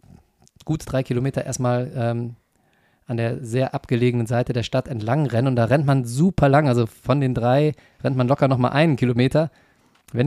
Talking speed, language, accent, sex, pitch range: 180 wpm, German, German, male, 115-140 Hz